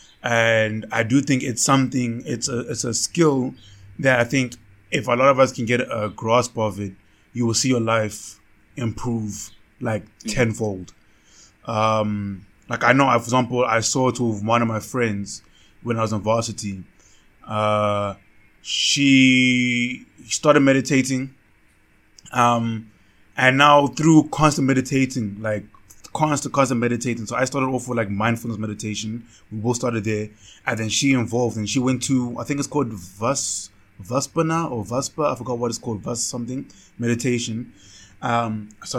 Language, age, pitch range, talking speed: English, 20-39, 105-130 Hz, 160 wpm